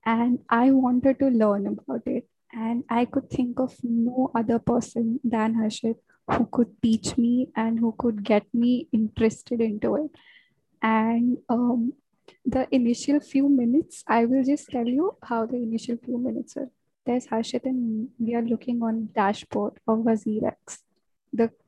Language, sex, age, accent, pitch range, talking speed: English, female, 10-29, Indian, 230-265 Hz, 160 wpm